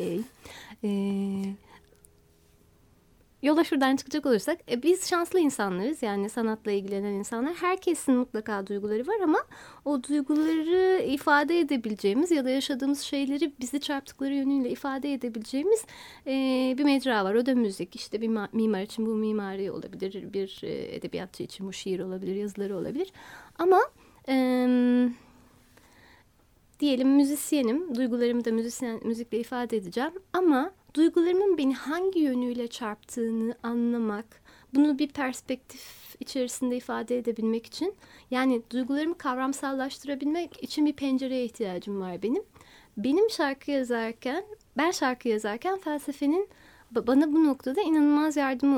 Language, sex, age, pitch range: Turkish, female, 30-49, 230-305 Hz